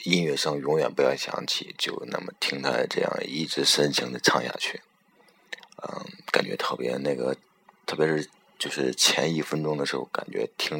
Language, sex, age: Chinese, male, 20-39